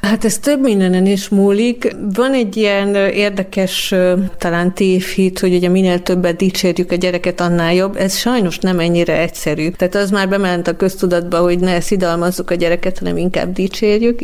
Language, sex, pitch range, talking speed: Hungarian, female, 175-200 Hz, 170 wpm